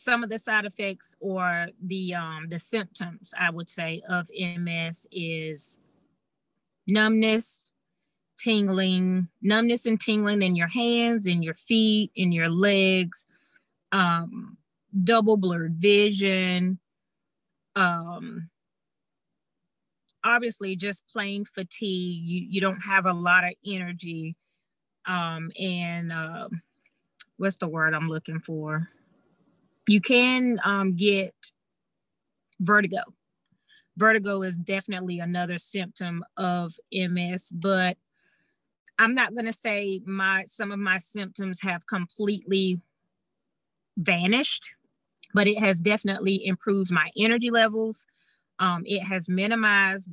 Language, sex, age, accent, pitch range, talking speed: English, female, 30-49, American, 175-210 Hz, 115 wpm